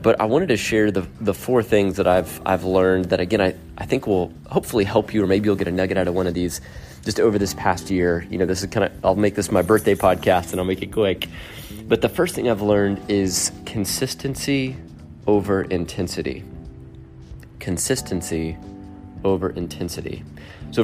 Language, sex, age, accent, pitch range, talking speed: English, male, 30-49, American, 90-105 Hz, 200 wpm